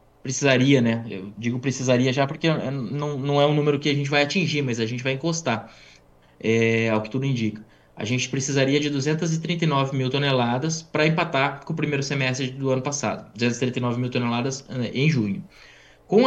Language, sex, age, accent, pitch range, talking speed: Portuguese, male, 20-39, Brazilian, 120-145 Hz, 175 wpm